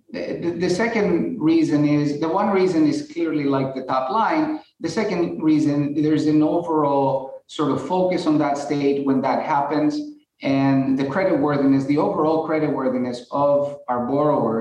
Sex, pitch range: male, 140-175 Hz